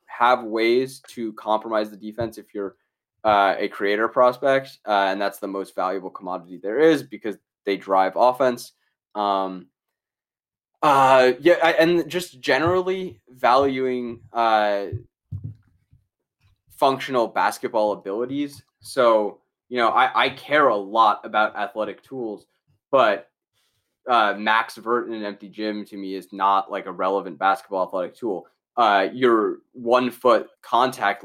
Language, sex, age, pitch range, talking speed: English, male, 20-39, 100-125 Hz, 135 wpm